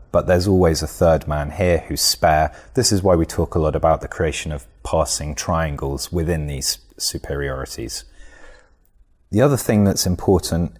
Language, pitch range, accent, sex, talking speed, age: English, 75-90 Hz, British, male, 165 wpm, 30-49